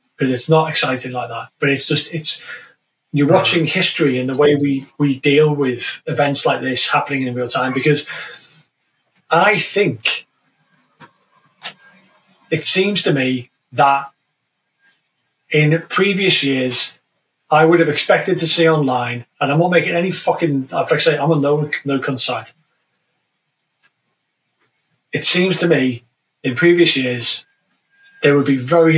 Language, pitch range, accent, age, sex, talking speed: English, 135-170 Hz, British, 30-49, male, 155 wpm